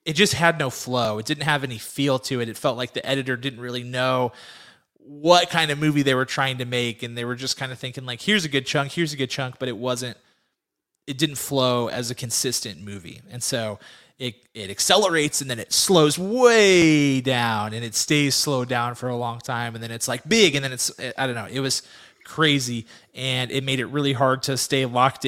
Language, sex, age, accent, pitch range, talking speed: English, male, 20-39, American, 120-150 Hz, 235 wpm